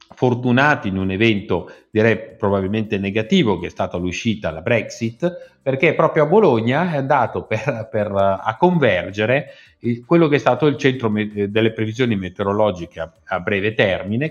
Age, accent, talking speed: 50-69, native, 145 wpm